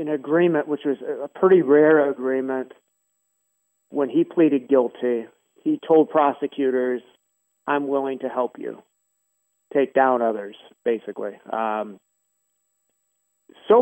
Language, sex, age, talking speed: English, male, 40-59, 115 wpm